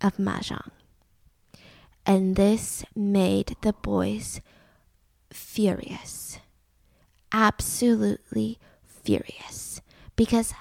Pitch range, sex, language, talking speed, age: 220-295 Hz, female, English, 60 wpm, 10-29